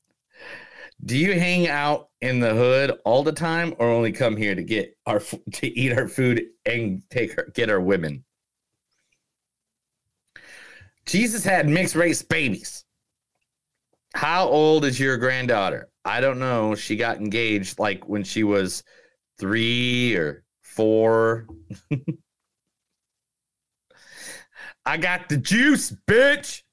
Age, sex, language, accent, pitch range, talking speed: 40-59, male, English, American, 115-180 Hz, 120 wpm